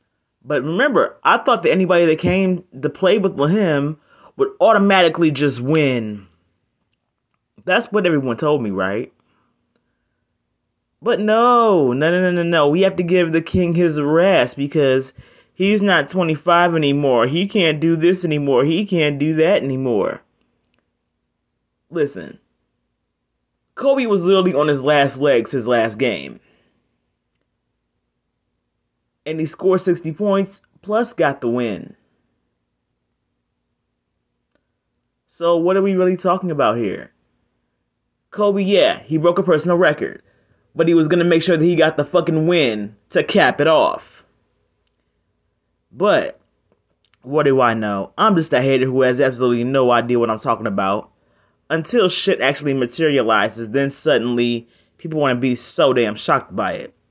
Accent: American